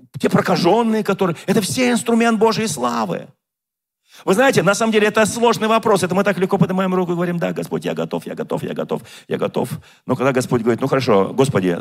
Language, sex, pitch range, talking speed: Russian, male, 160-225 Hz, 210 wpm